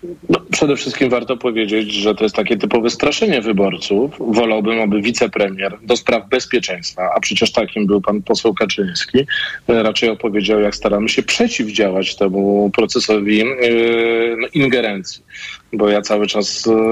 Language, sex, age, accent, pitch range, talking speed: Polish, male, 40-59, native, 110-145 Hz, 145 wpm